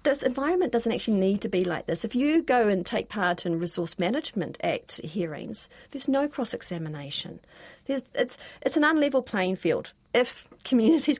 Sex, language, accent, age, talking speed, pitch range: female, English, Australian, 40-59, 170 wpm, 185-265 Hz